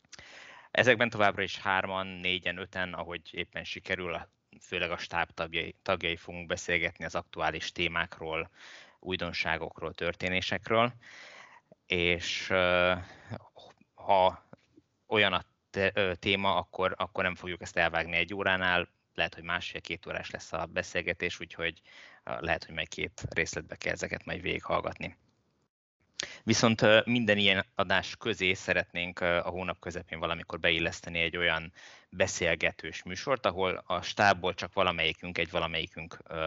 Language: Hungarian